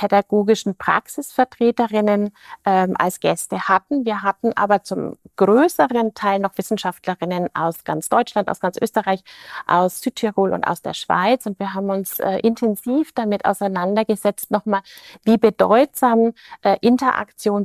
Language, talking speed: German, 135 wpm